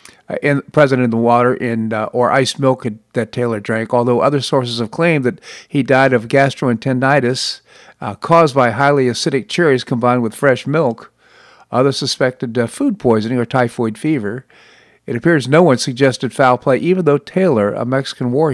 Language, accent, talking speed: English, American, 175 wpm